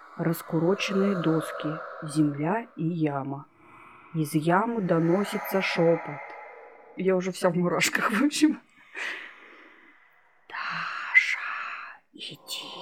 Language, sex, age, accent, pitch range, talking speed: Russian, female, 30-49, native, 165-200 Hz, 85 wpm